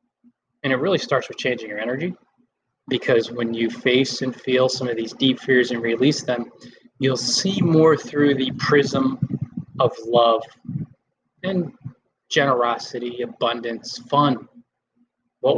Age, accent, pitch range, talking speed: 20-39, American, 125-185 Hz, 135 wpm